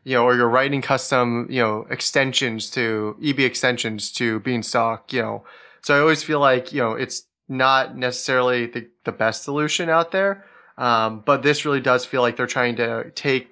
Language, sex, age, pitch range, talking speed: English, male, 30-49, 115-125 Hz, 190 wpm